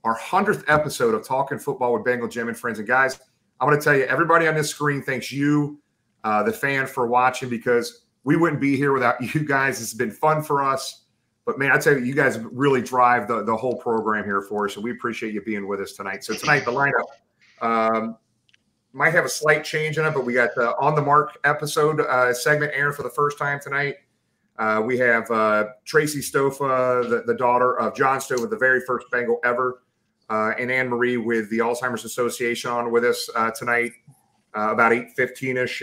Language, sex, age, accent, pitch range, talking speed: English, male, 40-59, American, 120-145 Hz, 215 wpm